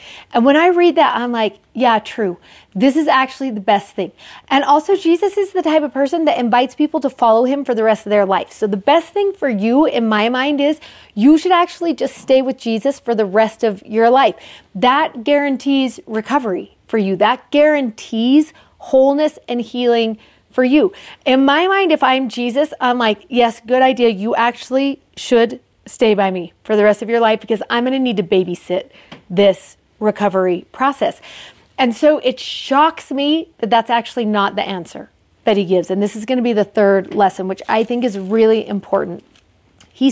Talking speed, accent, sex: 200 wpm, American, female